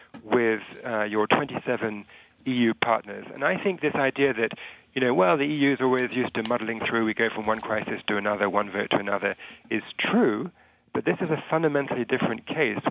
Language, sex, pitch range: English, male, 110-130 Hz